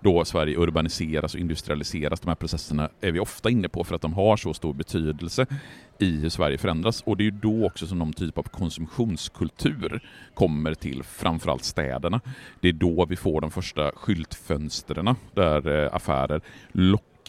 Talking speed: 175 wpm